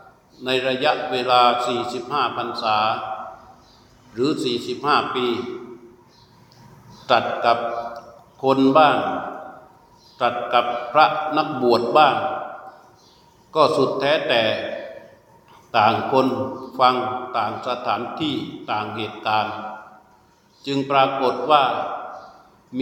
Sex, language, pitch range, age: male, Thai, 120-140 Hz, 60-79